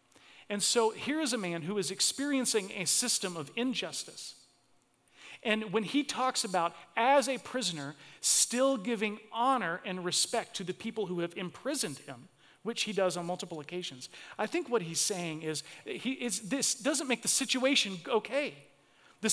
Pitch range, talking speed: 165-235 Hz, 170 wpm